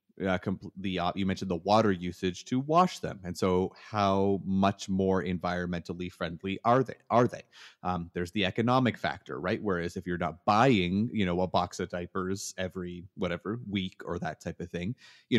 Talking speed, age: 195 wpm, 30-49